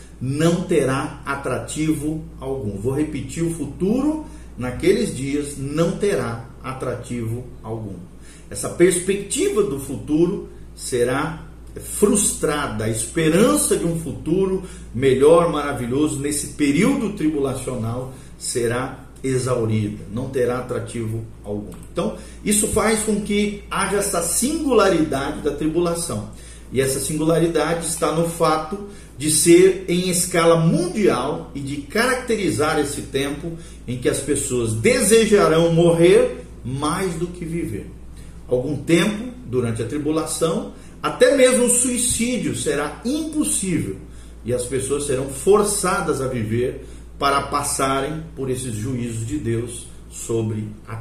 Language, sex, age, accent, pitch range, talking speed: Portuguese, male, 50-69, Brazilian, 125-185 Hz, 115 wpm